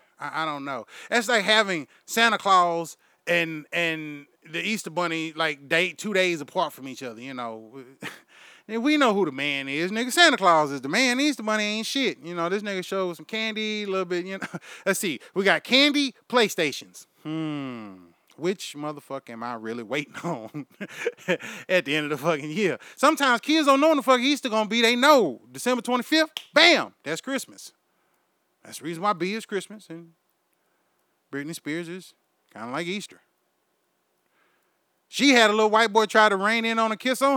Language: English